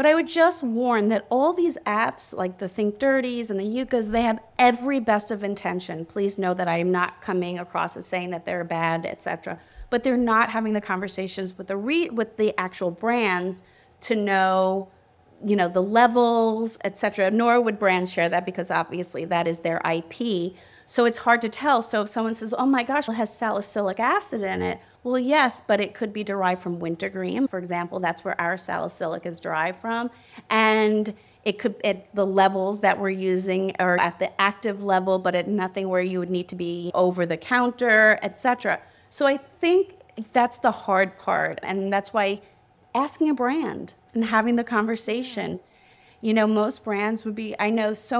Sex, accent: female, American